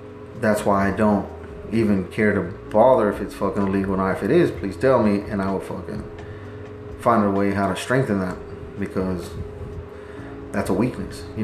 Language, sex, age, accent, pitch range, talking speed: English, male, 30-49, American, 95-105 Hz, 185 wpm